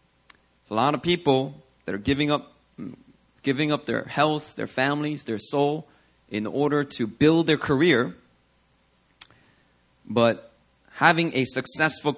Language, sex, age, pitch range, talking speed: English, male, 30-49, 105-150 Hz, 130 wpm